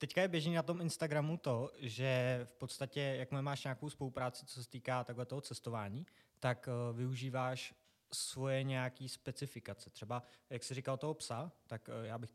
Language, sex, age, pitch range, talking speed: Czech, male, 20-39, 115-135 Hz, 160 wpm